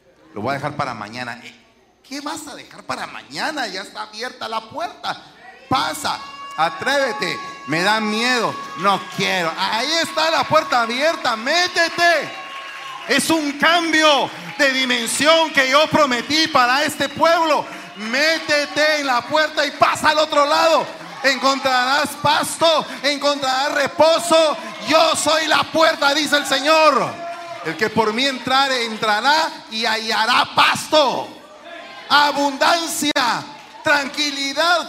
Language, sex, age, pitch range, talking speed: Spanish, male, 40-59, 235-310 Hz, 125 wpm